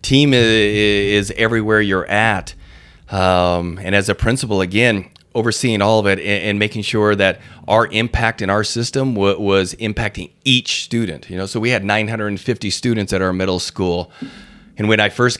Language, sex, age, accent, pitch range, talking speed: English, male, 30-49, American, 95-110 Hz, 170 wpm